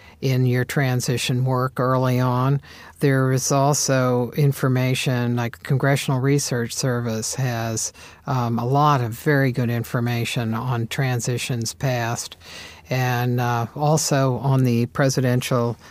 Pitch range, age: 120-140 Hz, 50-69